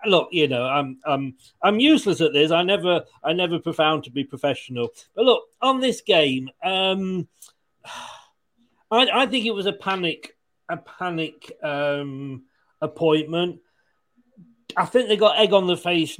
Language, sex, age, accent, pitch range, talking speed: English, male, 40-59, British, 150-200 Hz, 155 wpm